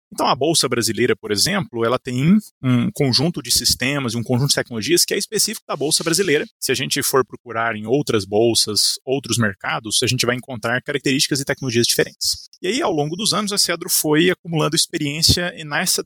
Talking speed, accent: 200 wpm, Brazilian